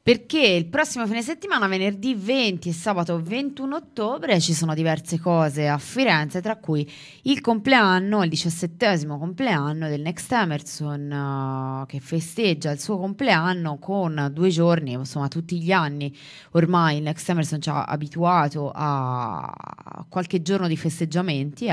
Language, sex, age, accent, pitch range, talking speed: Italian, female, 20-39, native, 145-190 Hz, 140 wpm